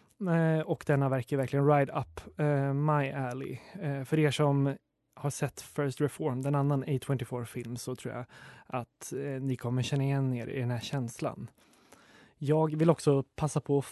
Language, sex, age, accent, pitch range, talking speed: Swedish, male, 20-39, native, 130-150 Hz, 160 wpm